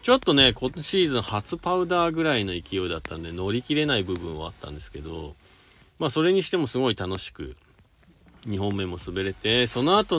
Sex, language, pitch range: male, Japanese, 85-120 Hz